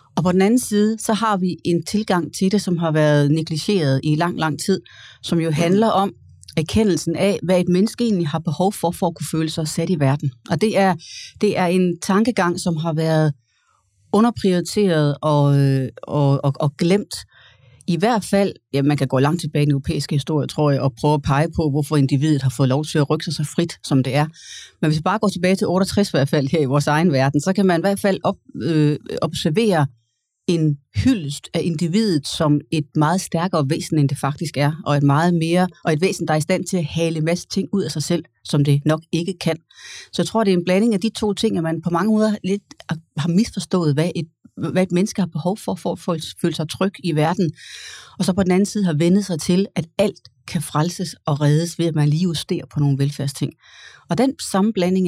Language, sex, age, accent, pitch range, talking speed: Danish, female, 30-49, native, 150-190 Hz, 235 wpm